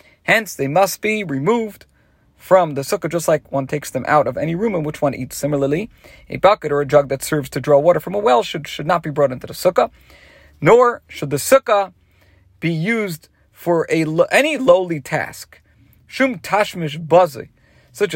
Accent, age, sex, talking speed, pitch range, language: American, 40-59, male, 180 wpm, 135-180 Hz, English